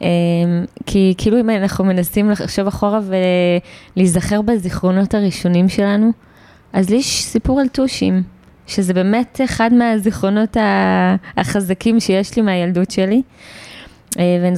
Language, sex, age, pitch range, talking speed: Hebrew, female, 20-39, 175-210 Hz, 105 wpm